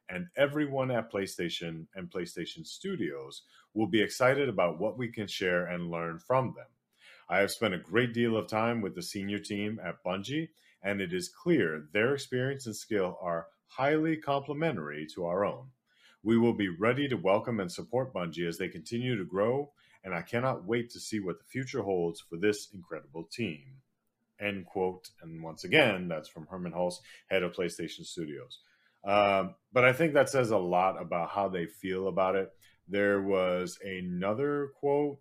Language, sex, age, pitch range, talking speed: English, male, 40-59, 90-120 Hz, 180 wpm